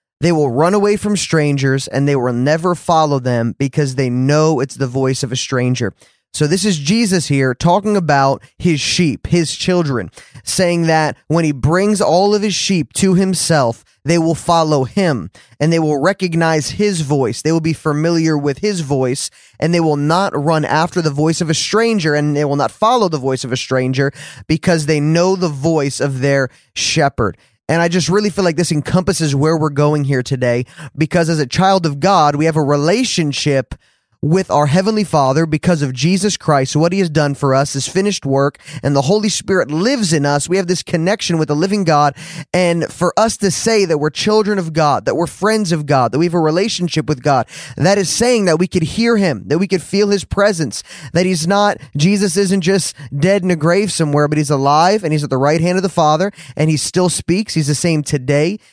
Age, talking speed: 20-39, 215 wpm